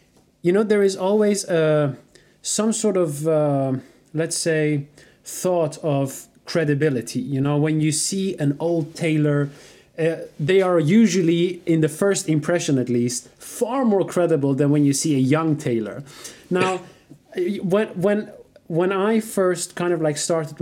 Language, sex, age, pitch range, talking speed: English, male, 30-49, 145-180 Hz, 155 wpm